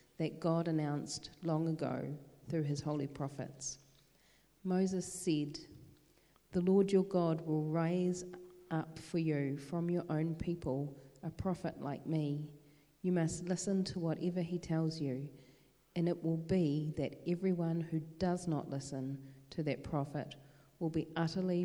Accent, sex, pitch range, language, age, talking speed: Australian, female, 140-175 Hz, English, 40-59, 145 wpm